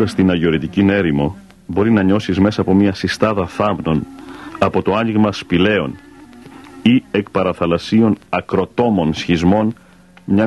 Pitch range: 90-110 Hz